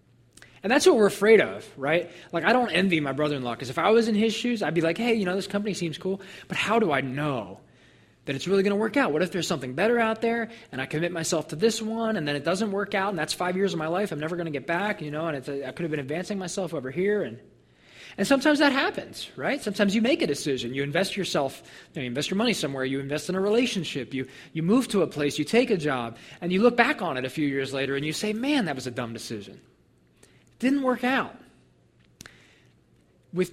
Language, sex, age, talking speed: English, male, 20-39, 260 wpm